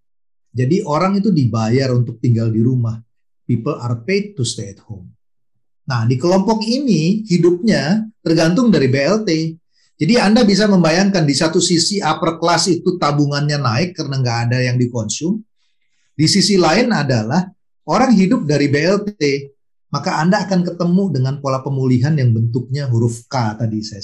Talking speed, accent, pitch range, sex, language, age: 150 wpm, native, 125-180 Hz, male, Indonesian, 40-59